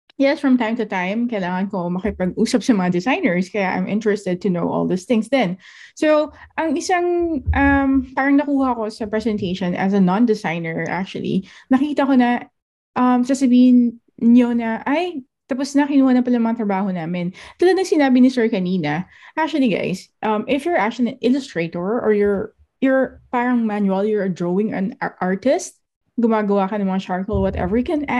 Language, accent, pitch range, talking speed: English, Filipino, 195-255 Hz, 175 wpm